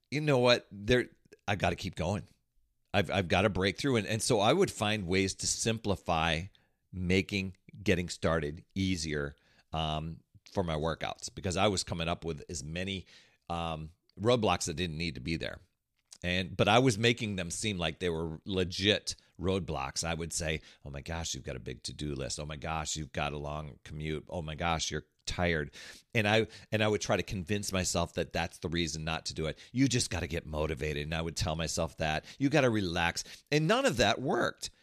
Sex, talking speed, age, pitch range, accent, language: male, 210 wpm, 40-59, 80-110 Hz, American, English